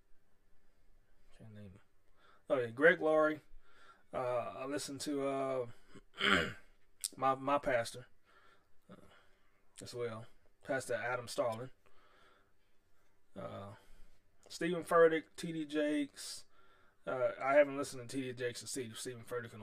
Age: 20-39